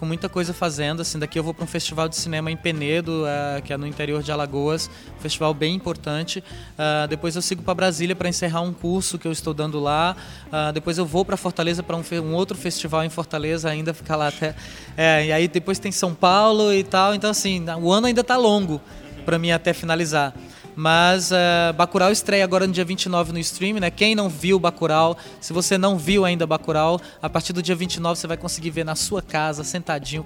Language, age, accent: Portuguese, 20-39, Brazilian